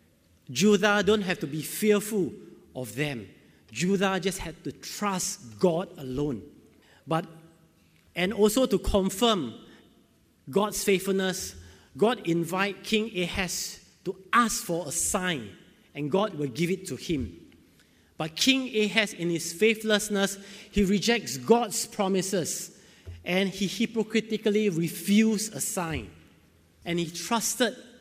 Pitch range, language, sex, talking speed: 145-200 Hz, English, male, 120 wpm